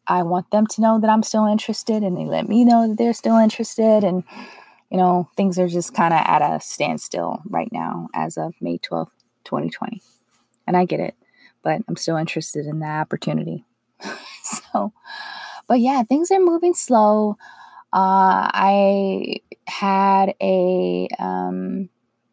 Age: 20-39